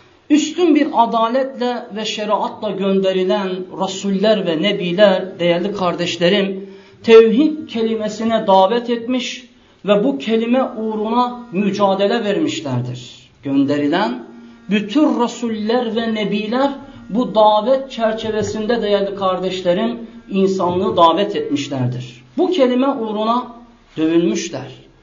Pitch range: 175-240 Hz